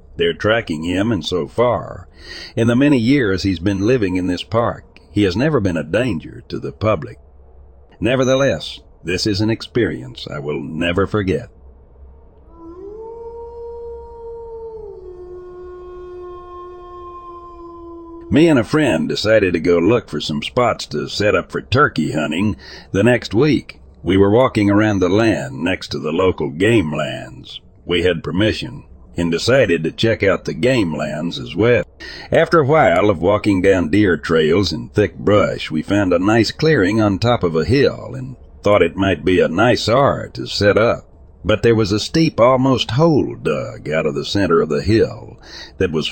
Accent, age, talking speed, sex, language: American, 60-79, 165 wpm, male, English